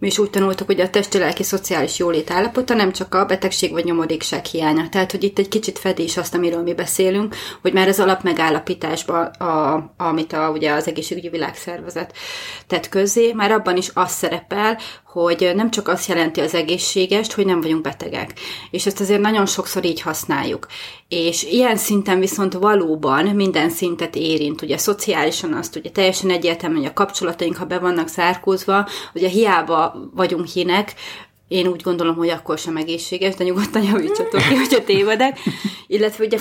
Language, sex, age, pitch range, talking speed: Hungarian, female, 30-49, 170-195 Hz, 175 wpm